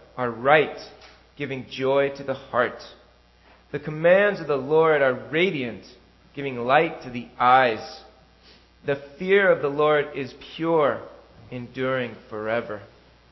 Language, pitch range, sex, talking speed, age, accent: English, 120-160 Hz, male, 125 wpm, 30-49, American